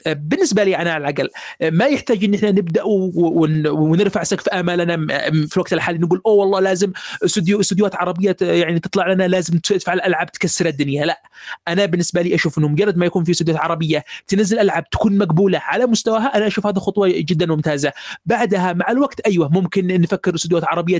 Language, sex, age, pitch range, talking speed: Arabic, male, 30-49, 165-195 Hz, 180 wpm